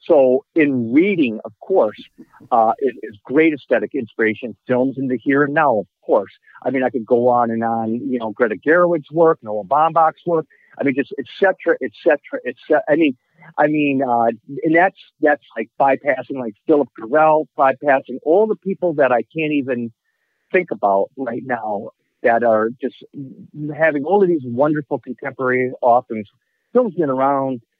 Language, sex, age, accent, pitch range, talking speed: English, male, 50-69, American, 120-155 Hz, 180 wpm